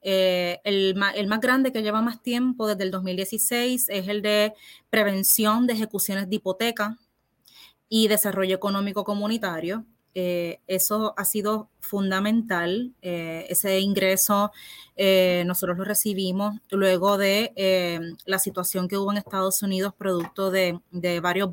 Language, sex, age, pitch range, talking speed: Spanish, female, 20-39, 190-220 Hz, 140 wpm